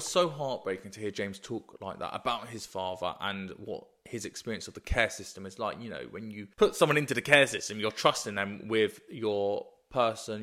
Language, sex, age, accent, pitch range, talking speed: English, male, 20-39, British, 100-125 Hz, 215 wpm